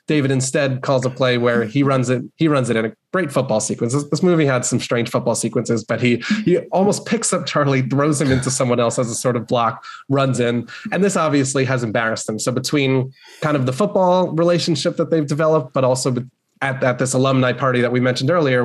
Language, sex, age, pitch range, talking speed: English, male, 20-39, 120-140 Hz, 230 wpm